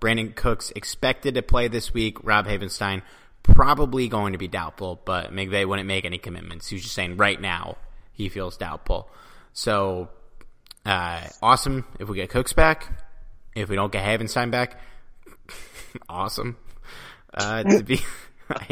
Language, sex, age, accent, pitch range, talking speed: English, male, 20-39, American, 95-120 Hz, 145 wpm